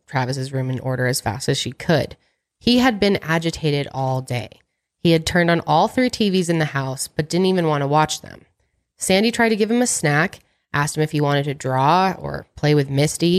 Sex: female